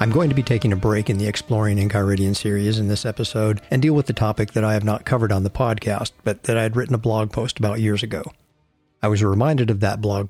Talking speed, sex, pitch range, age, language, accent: 260 wpm, male, 105-130 Hz, 50-69, English, American